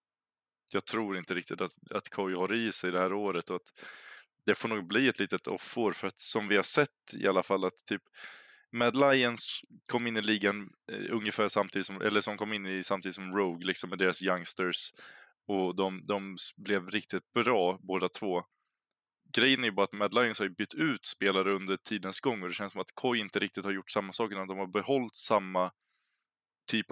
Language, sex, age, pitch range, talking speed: Swedish, male, 20-39, 95-110 Hz, 210 wpm